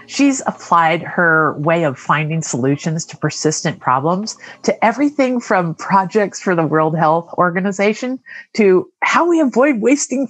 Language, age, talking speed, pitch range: English, 50-69, 140 wpm, 155-210 Hz